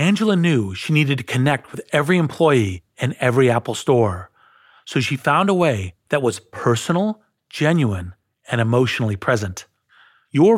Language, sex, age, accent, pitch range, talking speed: English, male, 40-59, American, 115-155 Hz, 145 wpm